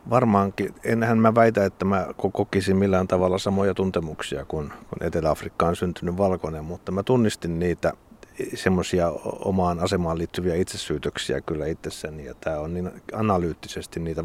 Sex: male